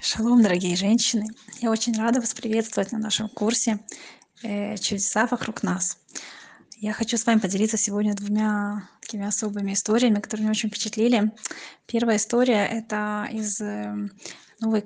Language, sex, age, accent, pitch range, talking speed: Russian, female, 20-39, native, 205-230 Hz, 135 wpm